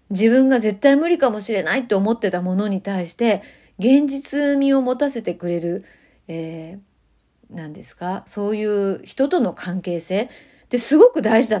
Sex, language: female, Japanese